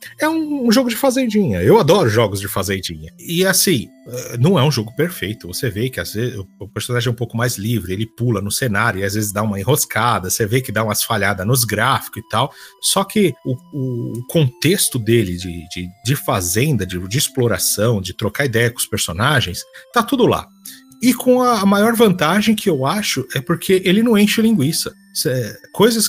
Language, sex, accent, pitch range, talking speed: Portuguese, male, Brazilian, 110-180 Hz, 200 wpm